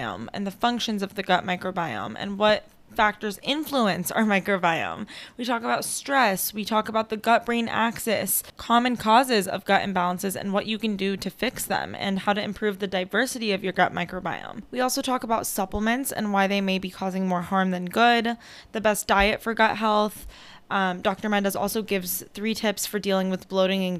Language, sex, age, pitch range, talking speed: English, female, 10-29, 190-225 Hz, 200 wpm